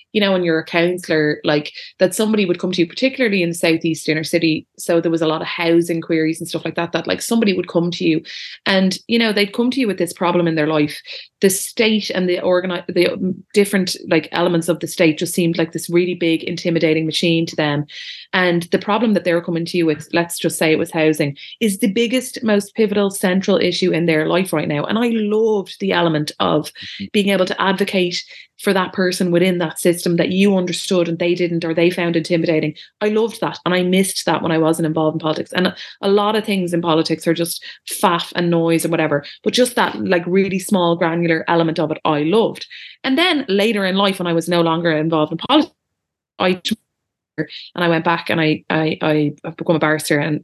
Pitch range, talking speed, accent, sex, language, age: 165-195 Hz, 230 wpm, Irish, female, English, 30-49